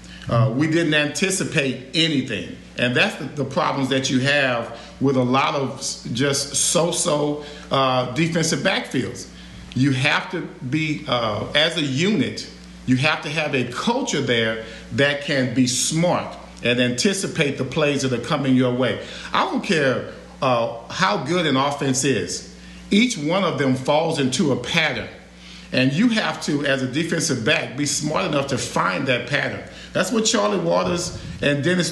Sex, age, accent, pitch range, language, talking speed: male, 50-69, American, 130-170 Hz, English, 165 wpm